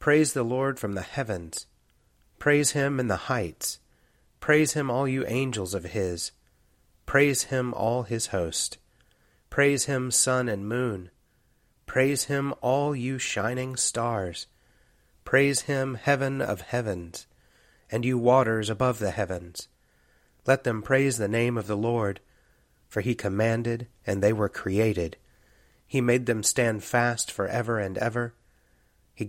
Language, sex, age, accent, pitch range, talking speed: English, male, 30-49, American, 105-130 Hz, 145 wpm